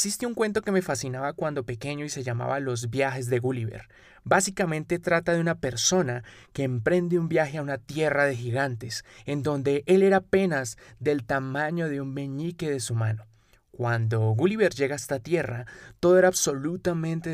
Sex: male